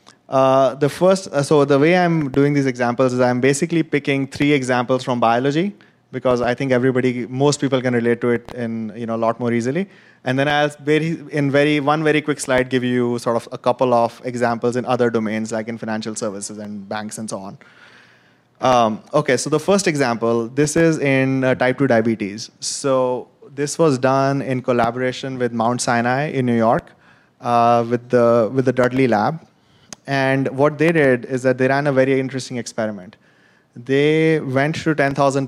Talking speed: 190 wpm